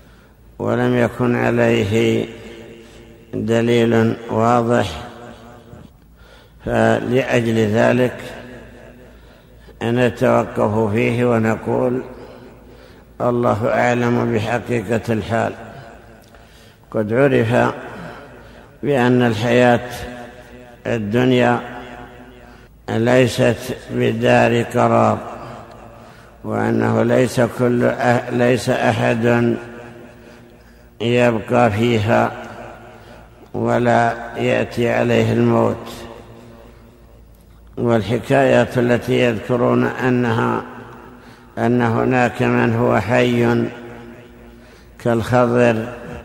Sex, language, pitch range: male, Arabic, 115-120 Hz